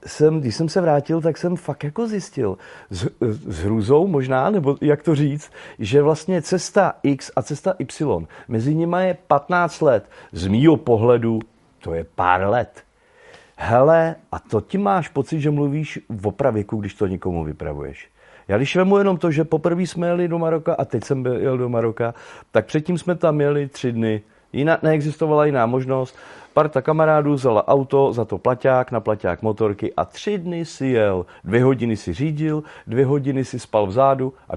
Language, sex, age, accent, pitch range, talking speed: Czech, male, 40-59, native, 110-150 Hz, 180 wpm